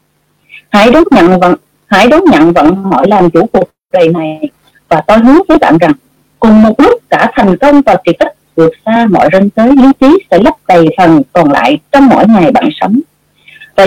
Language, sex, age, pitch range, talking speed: Vietnamese, female, 30-49, 180-295 Hz, 210 wpm